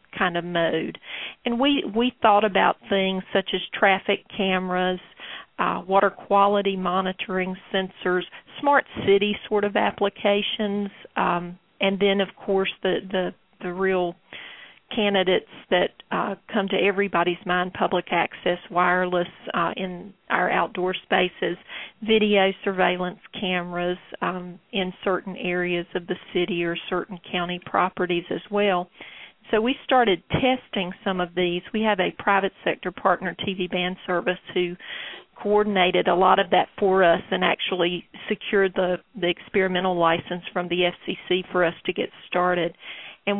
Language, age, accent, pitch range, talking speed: English, 40-59, American, 180-200 Hz, 140 wpm